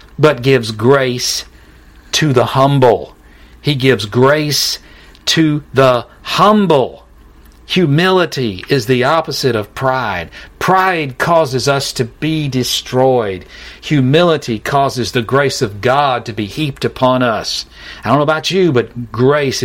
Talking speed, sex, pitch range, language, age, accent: 130 wpm, male, 115-170 Hz, English, 50-69, American